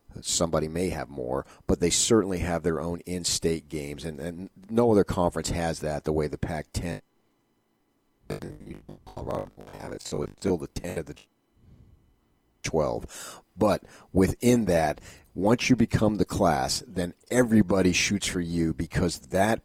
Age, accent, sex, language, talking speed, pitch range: 40-59, American, male, English, 145 wpm, 90-125 Hz